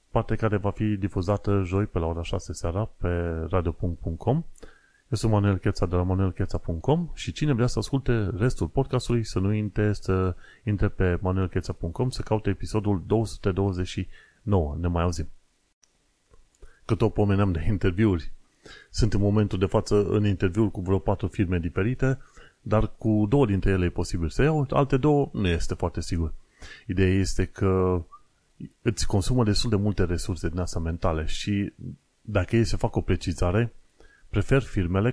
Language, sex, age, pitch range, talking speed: Romanian, male, 30-49, 90-110 Hz, 160 wpm